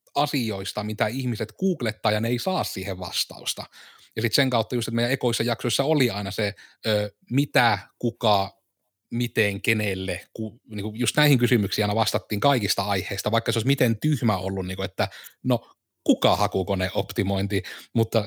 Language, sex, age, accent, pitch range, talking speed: Finnish, male, 30-49, native, 105-125 Hz, 155 wpm